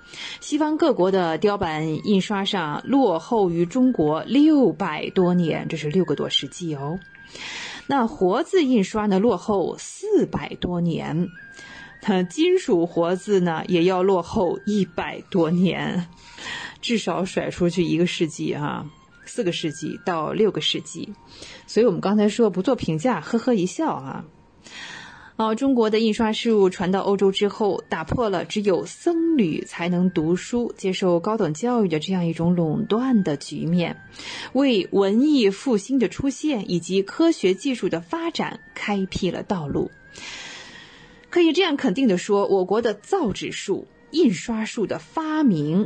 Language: Chinese